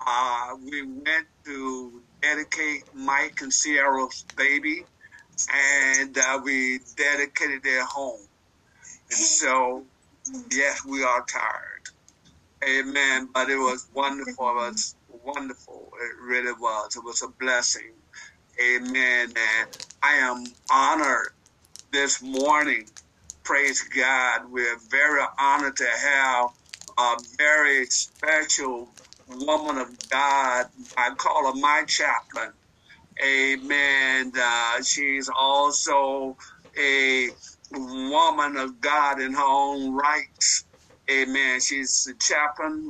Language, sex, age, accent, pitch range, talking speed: English, male, 50-69, American, 125-145 Hz, 110 wpm